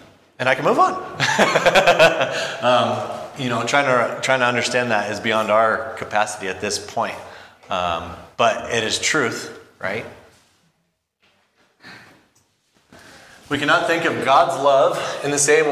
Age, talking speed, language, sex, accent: 30-49, 135 wpm, English, male, American